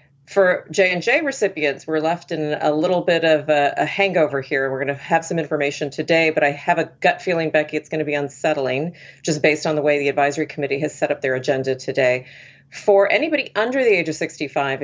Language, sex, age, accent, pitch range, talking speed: English, female, 40-59, American, 145-180 Hz, 220 wpm